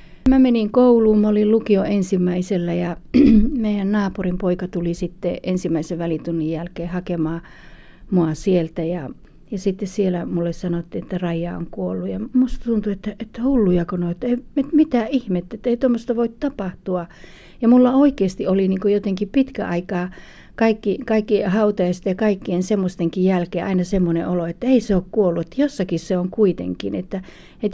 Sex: female